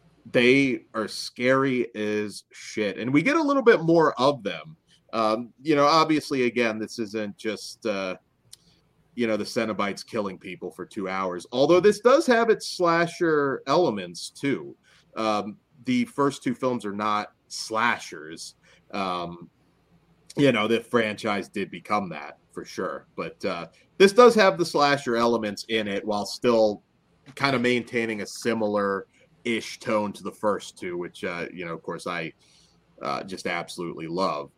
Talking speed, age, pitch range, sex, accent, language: 160 wpm, 30-49, 105-155 Hz, male, American, English